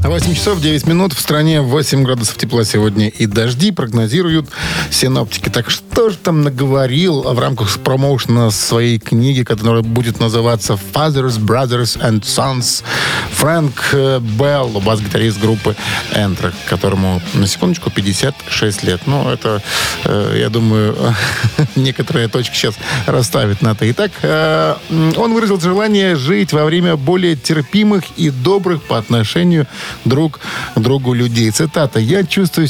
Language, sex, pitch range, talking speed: Russian, male, 115-160 Hz, 130 wpm